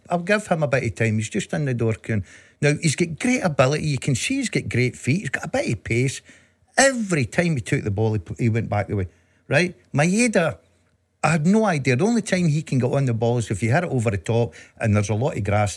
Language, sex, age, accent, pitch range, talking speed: English, male, 50-69, British, 110-145 Hz, 265 wpm